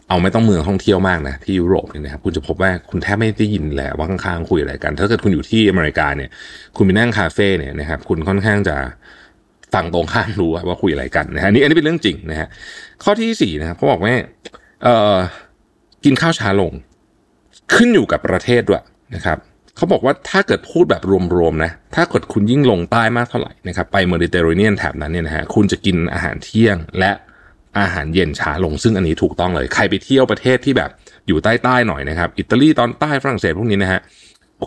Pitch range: 85-120 Hz